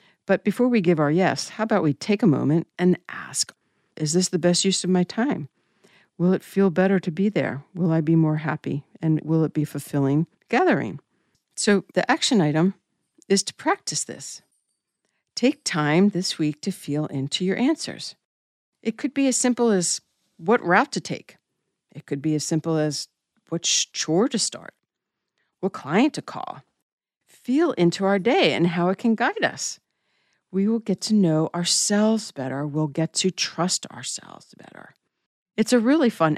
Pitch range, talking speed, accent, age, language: 155-200 Hz, 180 wpm, American, 60-79, English